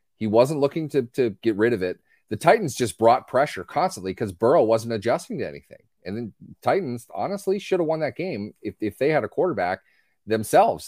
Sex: male